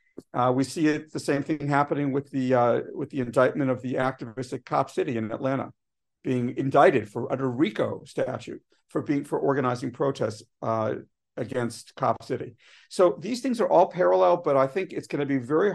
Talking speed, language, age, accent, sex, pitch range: 195 wpm, English, 50-69, American, male, 120-145 Hz